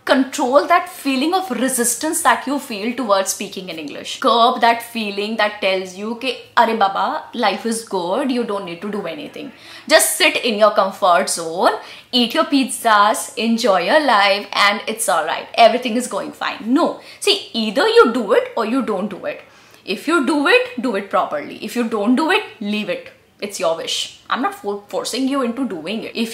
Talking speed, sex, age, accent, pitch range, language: 200 wpm, female, 20-39, native, 215-290 Hz, Hindi